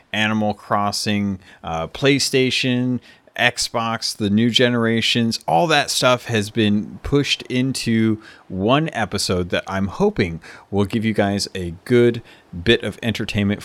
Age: 30-49